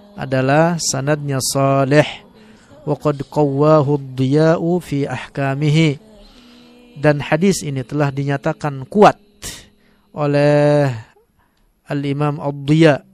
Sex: male